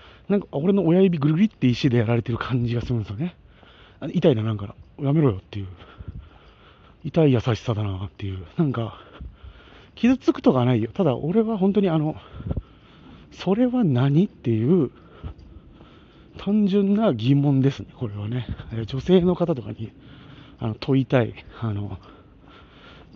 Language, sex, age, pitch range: Japanese, male, 40-59, 110-165 Hz